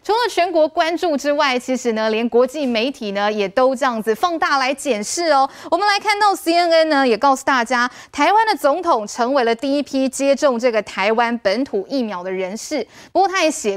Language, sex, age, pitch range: Chinese, female, 20-39, 230-315 Hz